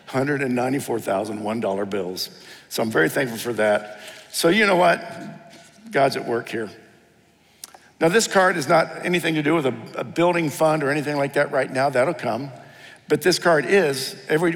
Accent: American